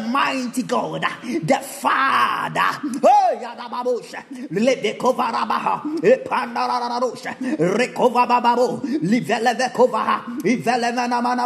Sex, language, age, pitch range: male, Japanese, 30-49, 235-260 Hz